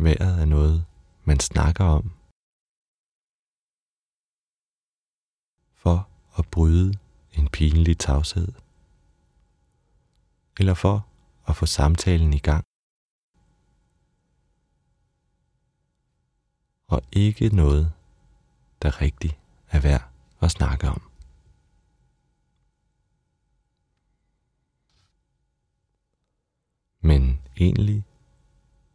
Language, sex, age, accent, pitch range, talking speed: Danish, male, 30-49, native, 70-90 Hz, 60 wpm